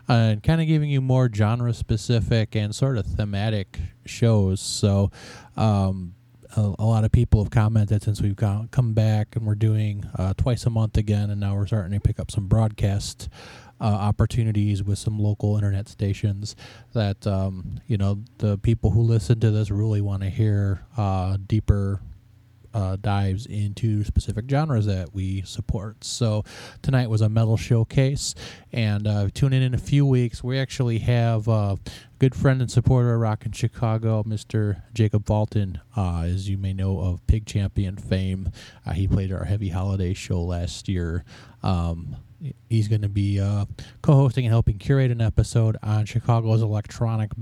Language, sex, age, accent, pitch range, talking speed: English, male, 20-39, American, 100-115 Hz, 170 wpm